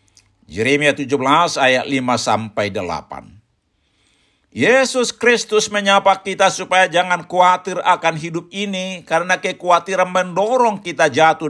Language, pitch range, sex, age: Indonesian, 120-180 Hz, male, 60-79